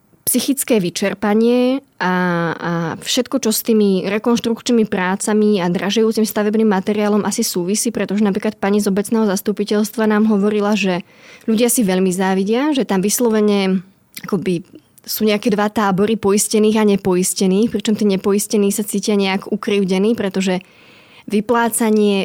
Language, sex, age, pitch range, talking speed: Slovak, female, 20-39, 200-230 Hz, 130 wpm